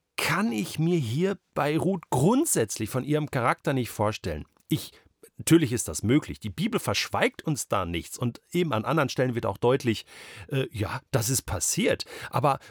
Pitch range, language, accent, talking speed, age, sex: 125-175 Hz, German, German, 175 wpm, 40-59, male